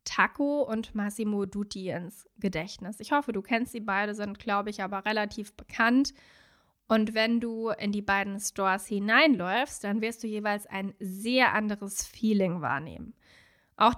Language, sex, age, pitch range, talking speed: German, female, 20-39, 200-245 Hz, 155 wpm